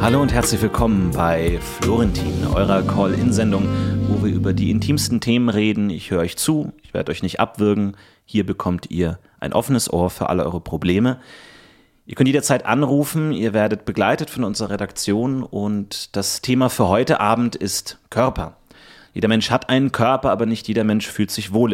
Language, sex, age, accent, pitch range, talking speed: German, male, 30-49, German, 100-125 Hz, 175 wpm